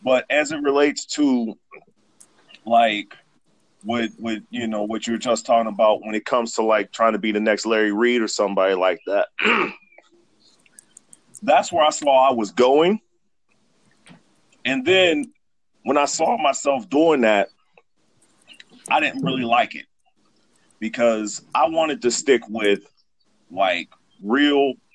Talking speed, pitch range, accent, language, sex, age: 145 wpm, 110-185 Hz, American, English, male, 40-59